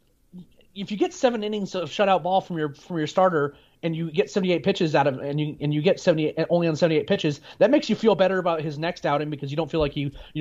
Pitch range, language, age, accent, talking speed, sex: 145-175 Hz, English, 30-49, American, 265 wpm, male